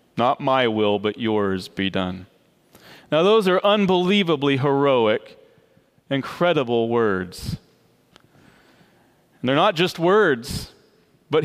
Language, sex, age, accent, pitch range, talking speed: English, male, 30-49, American, 145-185 Hz, 100 wpm